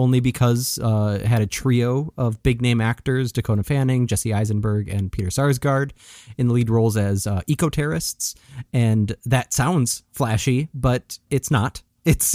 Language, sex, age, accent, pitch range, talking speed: English, male, 20-39, American, 110-130 Hz, 160 wpm